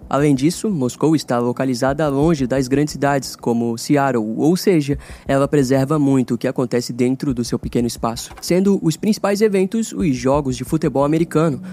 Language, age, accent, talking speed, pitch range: Portuguese, 20-39, Brazilian, 170 wpm, 125-160 Hz